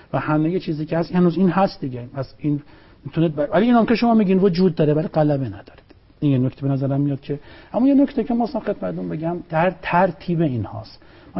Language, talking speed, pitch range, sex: Persian, 225 wpm, 120-165 Hz, male